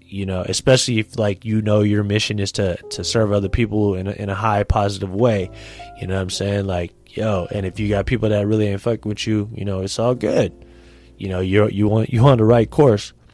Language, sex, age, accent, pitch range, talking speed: English, male, 20-39, American, 95-115 Hz, 250 wpm